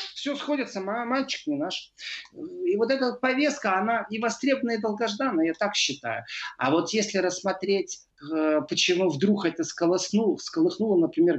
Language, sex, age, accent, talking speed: Russian, male, 40-59, native, 140 wpm